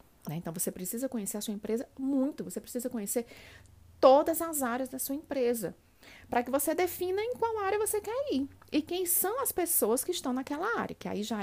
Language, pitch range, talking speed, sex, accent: Portuguese, 200-285 Hz, 210 wpm, female, Brazilian